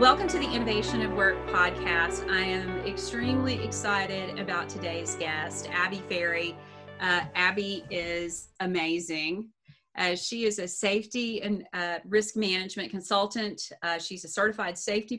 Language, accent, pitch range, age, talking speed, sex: English, American, 170-210 Hz, 30-49, 140 wpm, female